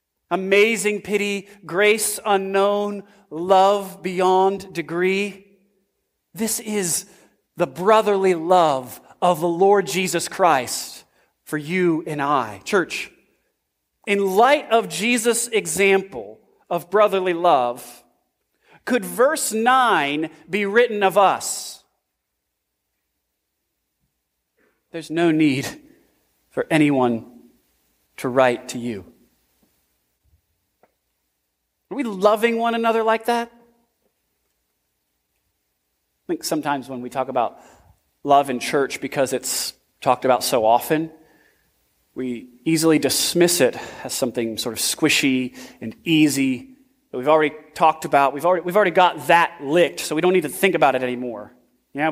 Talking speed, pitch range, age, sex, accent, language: 115 wpm, 130-200 Hz, 40-59, male, American, English